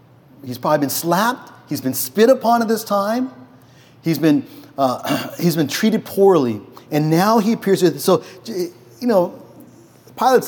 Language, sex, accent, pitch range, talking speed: English, male, American, 130-180 Hz, 160 wpm